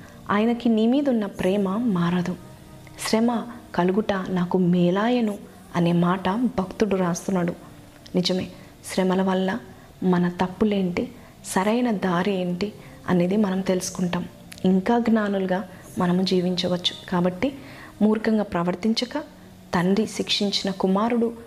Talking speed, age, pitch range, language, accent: 95 wpm, 20-39, 185-220 Hz, Telugu, native